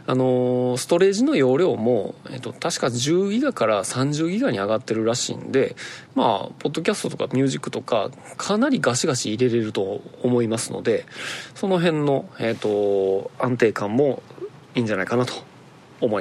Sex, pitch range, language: male, 110-185 Hz, Japanese